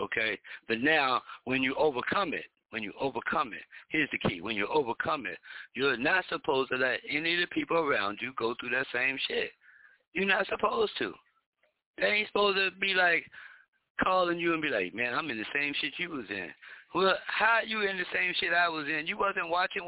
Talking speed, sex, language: 215 wpm, male, English